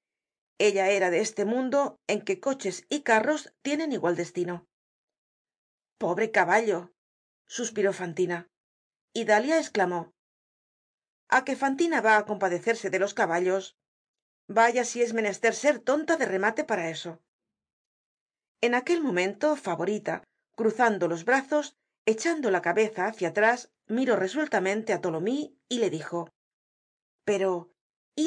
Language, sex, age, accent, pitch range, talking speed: Spanish, female, 40-59, Spanish, 180-265 Hz, 125 wpm